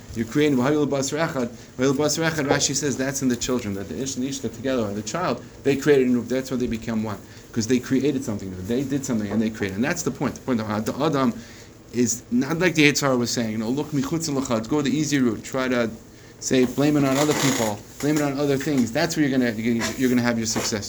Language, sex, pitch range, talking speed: English, male, 110-130 Hz, 230 wpm